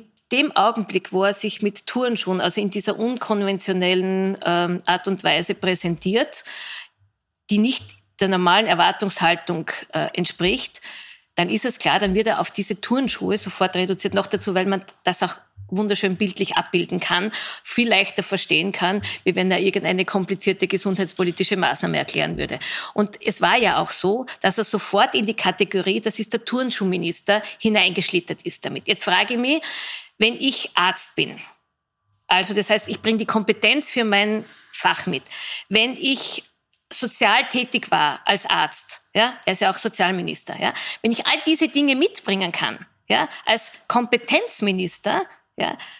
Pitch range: 190-240 Hz